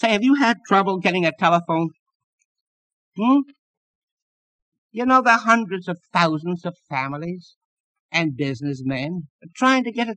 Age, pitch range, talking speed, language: 60-79, 135-225 Hz, 140 wpm, English